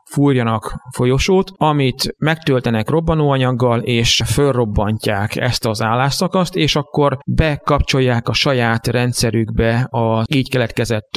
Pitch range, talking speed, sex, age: 120-140 Hz, 100 wpm, male, 30-49